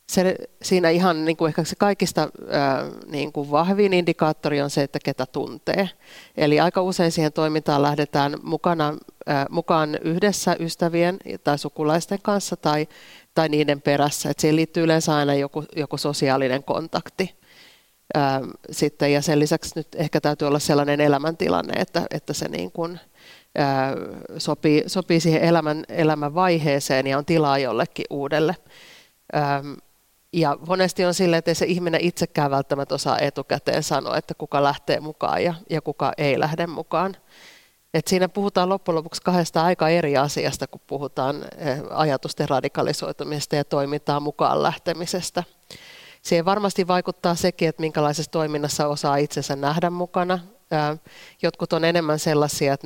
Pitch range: 145-170 Hz